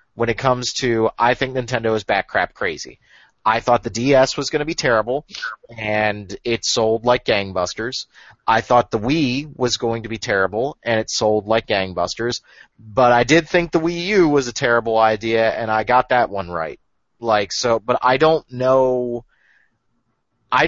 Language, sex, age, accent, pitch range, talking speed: English, male, 30-49, American, 115-165 Hz, 185 wpm